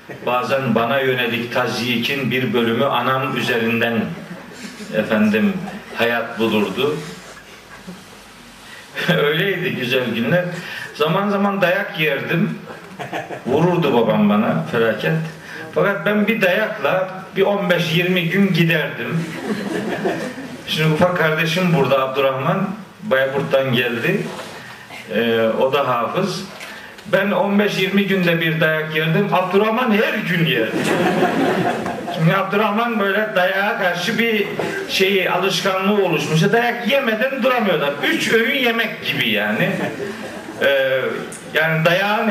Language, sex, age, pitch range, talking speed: Turkish, male, 50-69, 145-200 Hz, 100 wpm